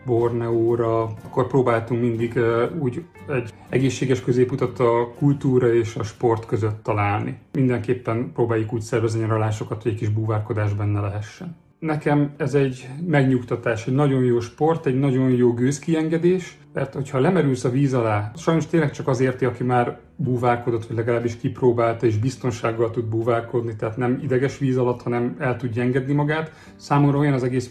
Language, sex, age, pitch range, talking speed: Hungarian, male, 30-49, 115-145 Hz, 160 wpm